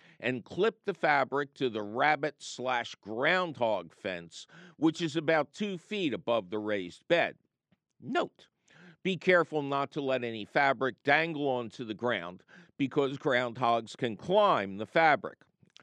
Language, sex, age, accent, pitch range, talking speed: English, male, 50-69, American, 120-170 Hz, 135 wpm